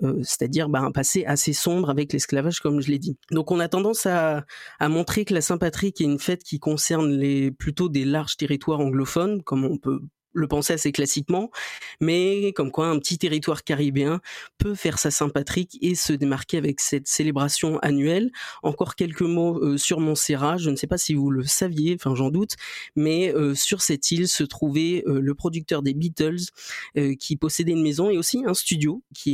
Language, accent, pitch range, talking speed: French, French, 140-170 Hz, 200 wpm